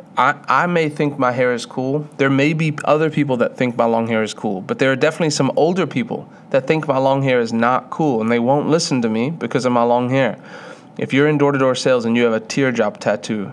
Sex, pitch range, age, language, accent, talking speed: male, 125-155 Hz, 30-49, English, American, 260 wpm